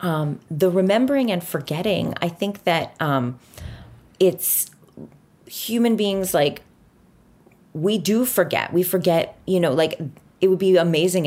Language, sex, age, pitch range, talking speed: English, female, 30-49, 135-180 Hz, 135 wpm